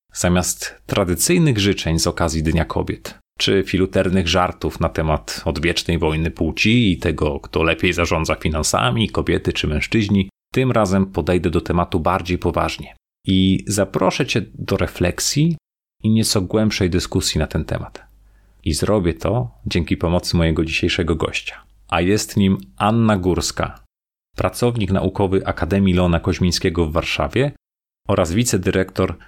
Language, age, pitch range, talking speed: Polish, 30-49, 85-100 Hz, 135 wpm